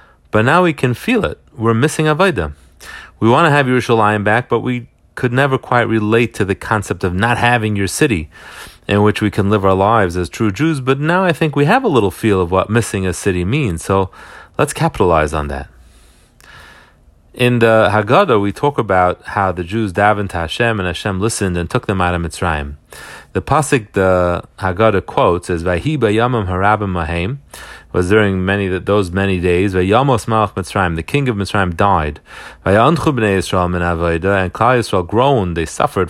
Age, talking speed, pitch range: 30-49, 180 wpm, 90-120 Hz